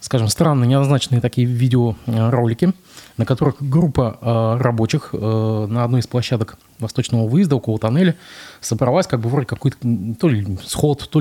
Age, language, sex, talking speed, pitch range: 20-39, Russian, male, 150 wpm, 110-145 Hz